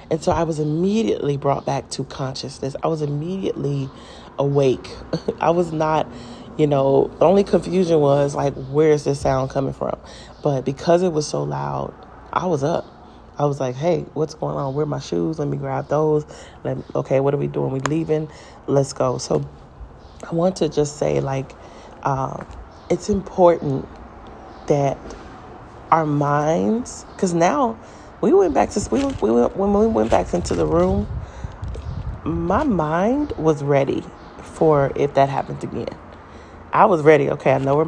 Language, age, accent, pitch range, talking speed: English, 30-49, American, 135-165 Hz, 165 wpm